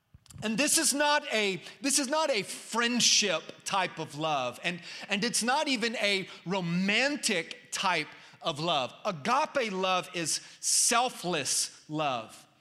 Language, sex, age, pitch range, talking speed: English, male, 30-49, 175-220 Hz, 135 wpm